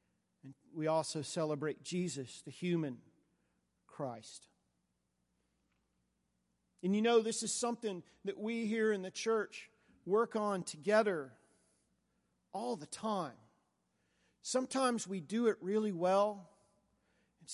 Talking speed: 110 wpm